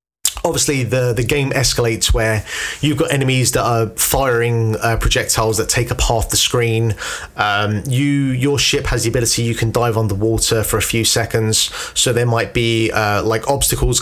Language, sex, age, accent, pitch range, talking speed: English, male, 30-49, British, 110-135 Hz, 190 wpm